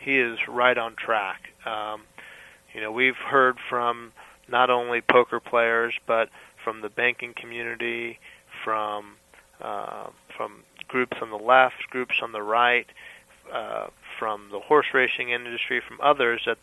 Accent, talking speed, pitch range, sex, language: American, 145 wpm, 110-125 Hz, male, English